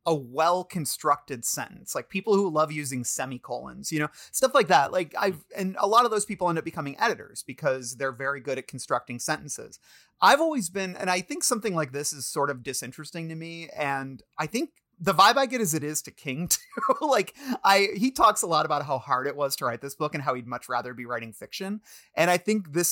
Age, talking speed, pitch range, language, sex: 30-49, 230 wpm, 130-185 Hz, English, male